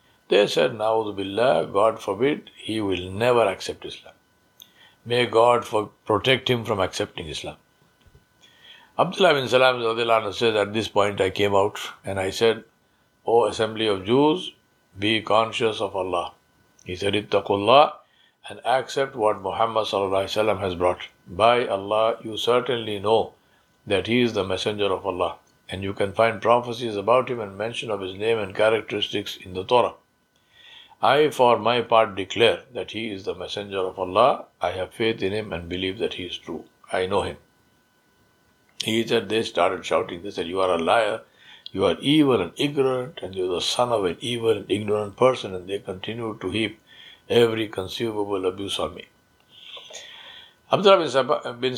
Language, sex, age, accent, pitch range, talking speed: English, male, 60-79, Indian, 100-120 Hz, 170 wpm